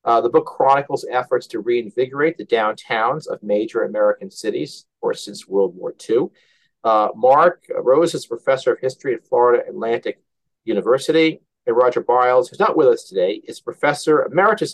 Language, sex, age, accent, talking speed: English, male, 50-69, American, 165 wpm